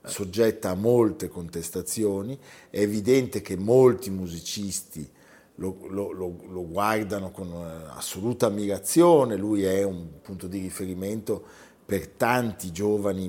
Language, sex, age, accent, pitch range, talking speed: Italian, male, 40-59, native, 95-120 Hz, 110 wpm